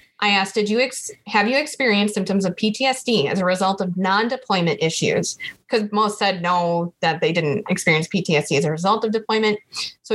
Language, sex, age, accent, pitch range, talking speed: English, female, 20-39, American, 190-220 Hz, 190 wpm